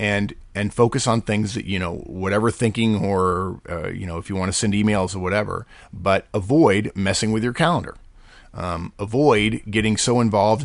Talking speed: 185 wpm